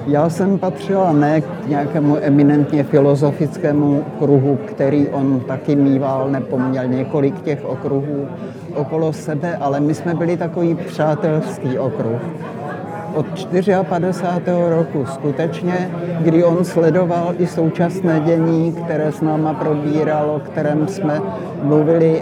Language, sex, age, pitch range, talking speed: Slovak, male, 60-79, 150-175 Hz, 115 wpm